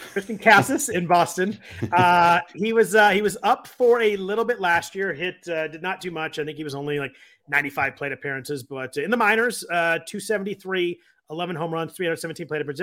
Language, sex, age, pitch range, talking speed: English, male, 30-49, 145-190 Hz, 205 wpm